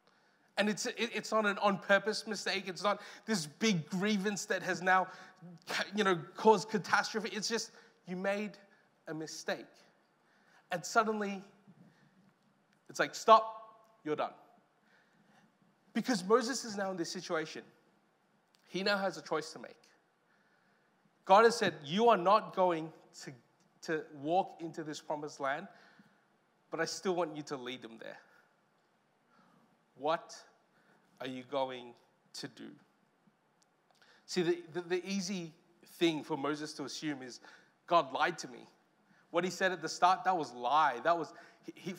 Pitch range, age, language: 160-200 Hz, 20-39, English